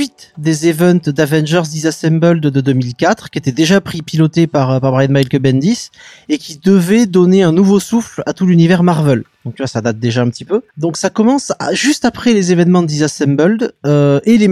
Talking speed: 200 wpm